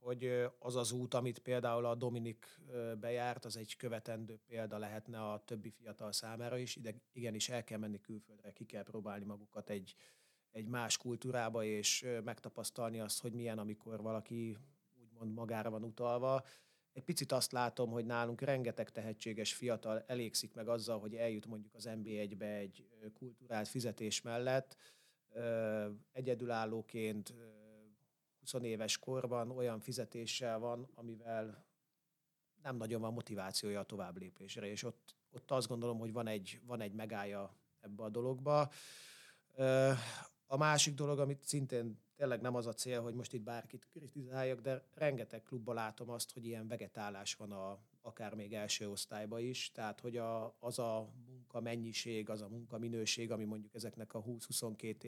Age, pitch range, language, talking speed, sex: 30-49, 110-125 Hz, Hungarian, 155 wpm, male